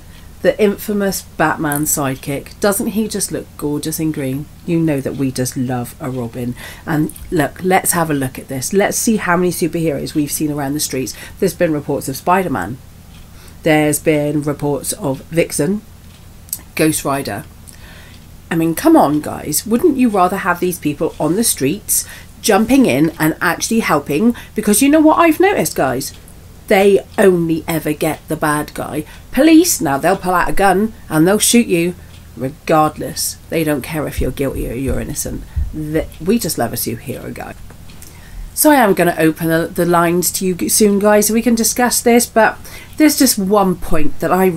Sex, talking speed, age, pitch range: female, 180 wpm, 40-59, 130-185 Hz